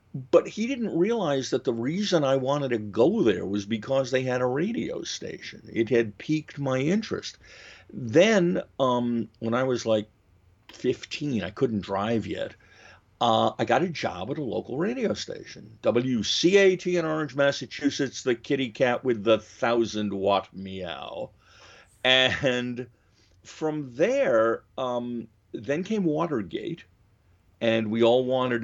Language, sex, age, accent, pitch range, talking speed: English, male, 50-69, American, 100-135 Hz, 140 wpm